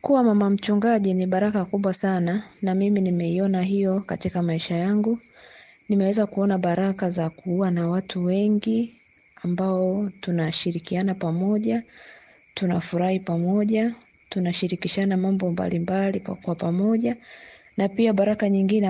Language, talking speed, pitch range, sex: Swahili, 120 wpm, 175-205 Hz, female